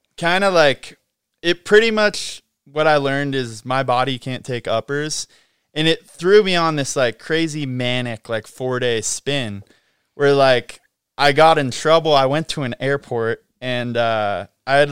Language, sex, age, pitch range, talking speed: English, male, 20-39, 115-145 Hz, 175 wpm